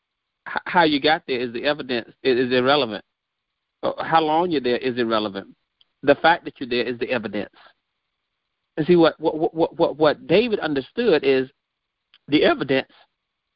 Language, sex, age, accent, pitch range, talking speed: English, male, 40-59, American, 150-225 Hz, 155 wpm